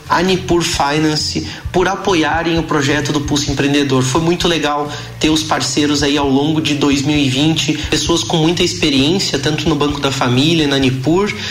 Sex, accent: male, Brazilian